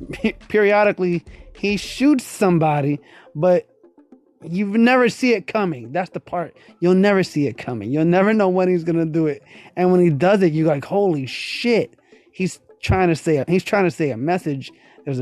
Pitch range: 140-170 Hz